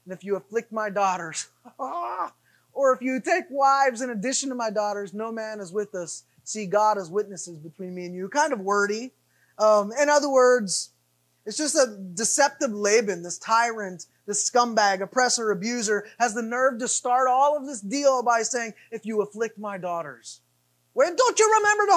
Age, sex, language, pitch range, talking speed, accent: 20-39, male, English, 180-285 Hz, 185 wpm, American